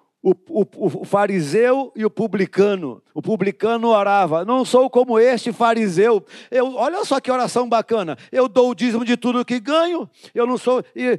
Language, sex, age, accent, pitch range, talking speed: Portuguese, male, 50-69, Brazilian, 155-235 Hz, 175 wpm